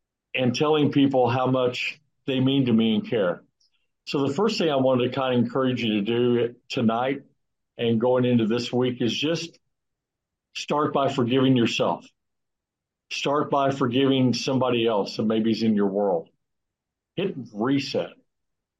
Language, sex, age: English, male, 50-69